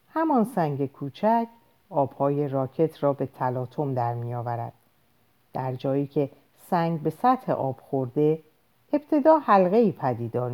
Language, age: Persian, 50-69